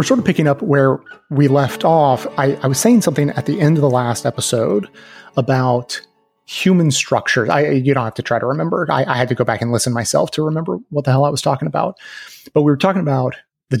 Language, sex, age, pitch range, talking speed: English, male, 30-49, 120-145 Hz, 245 wpm